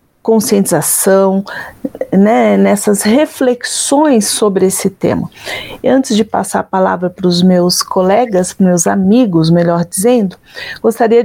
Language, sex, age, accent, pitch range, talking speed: Portuguese, female, 40-59, Brazilian, 195-245 Hz, 110 wpm